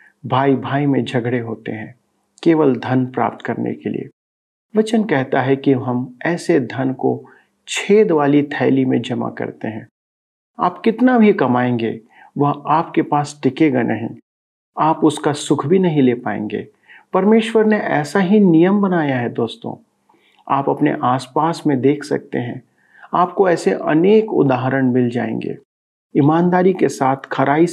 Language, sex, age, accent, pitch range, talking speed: Hindi, male, 50-69, native, 125-170 Hz, 150 wpm